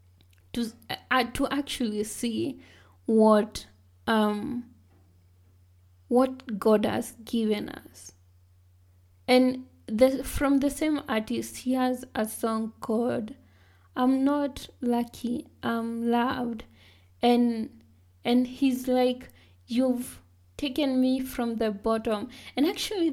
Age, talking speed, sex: 20-39, 105 wpm, female